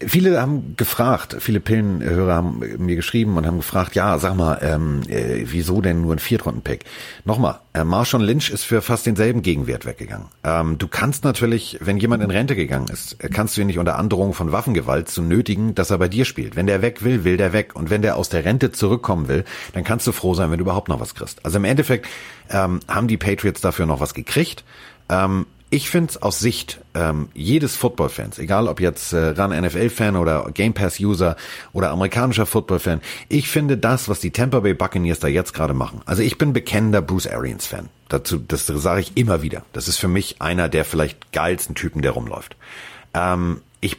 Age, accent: 40-59, German